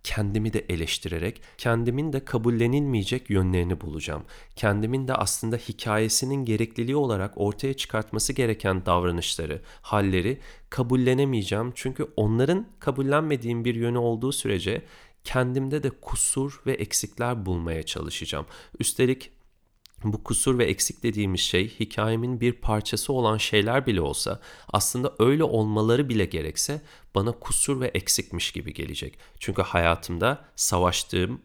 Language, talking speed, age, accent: Turkish, 120 wpm, 40-59, native